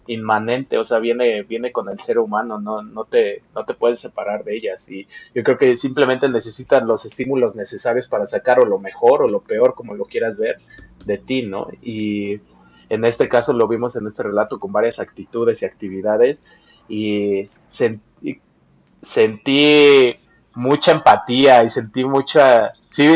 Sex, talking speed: male, 170 wpm